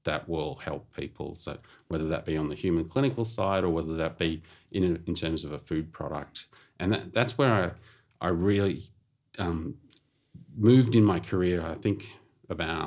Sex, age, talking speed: male, 30-49, 180 wpm